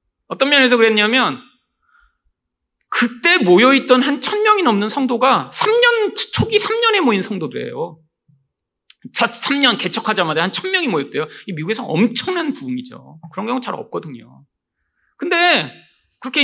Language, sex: Korean, male